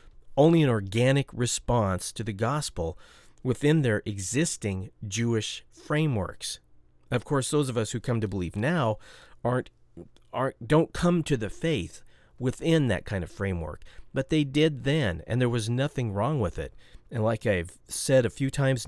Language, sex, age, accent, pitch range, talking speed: English, male, 40-59, American, 95-135 Hz, 165 wpm